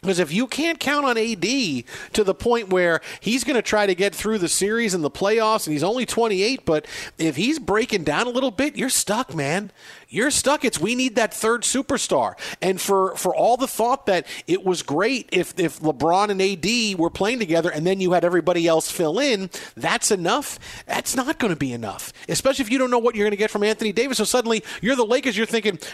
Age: 40-59